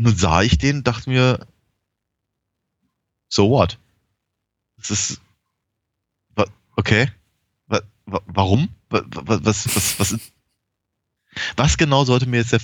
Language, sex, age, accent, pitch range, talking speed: German, male, 20-39, German, 100-120 Hz, 105 wpm